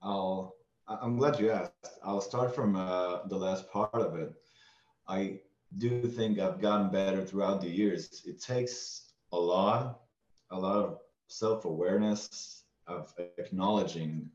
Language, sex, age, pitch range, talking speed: English, male, 20-39, 95-110 Hz, 140 wpm